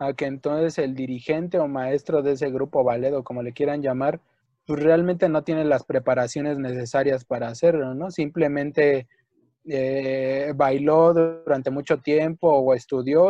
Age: 20-39